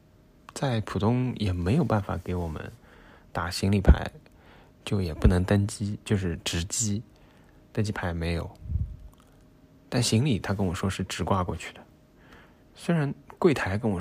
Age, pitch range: 20-39, 90-115 Hz